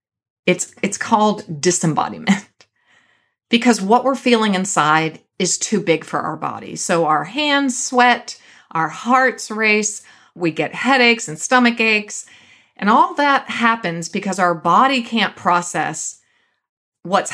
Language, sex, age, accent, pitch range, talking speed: English, female, 40-59, American, 175-250 Hz, 130 wpm